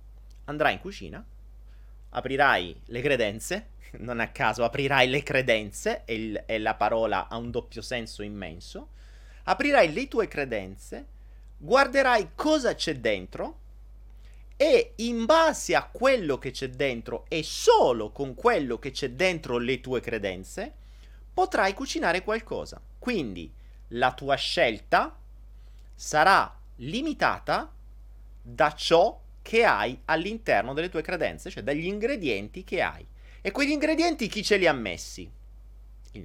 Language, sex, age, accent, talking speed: Italian, male, 30-49, native, 125 wpm